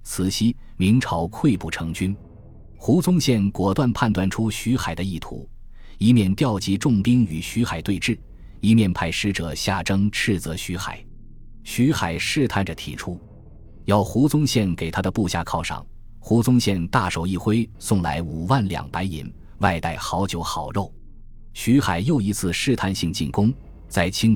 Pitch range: 85-115 Hz